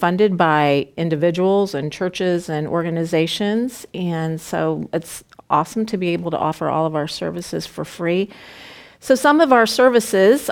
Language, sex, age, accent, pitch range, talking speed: English, female, 40-59, American, 165-200 Hz, 155 wpm